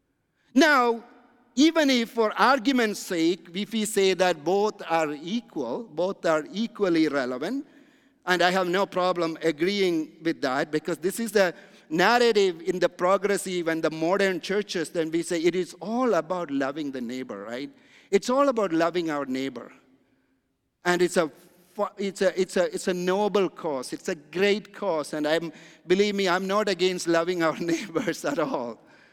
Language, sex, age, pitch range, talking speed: English, male, 50-69, 180-250 Hz, 165 wpm